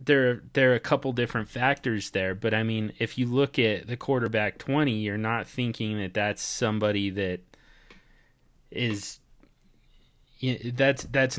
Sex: male